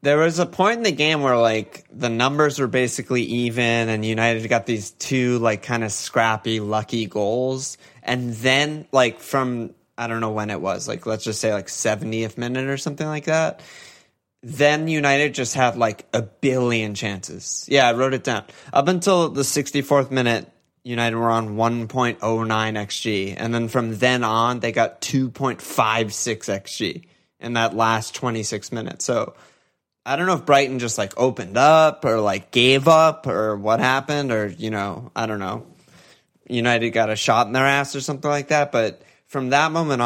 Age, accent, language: 20-39, American, English